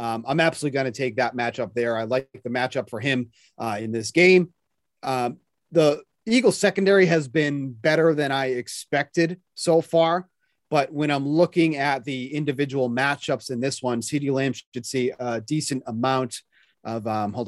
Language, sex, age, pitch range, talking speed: English, male, 30-49, 120-160 Hz, 180 wpm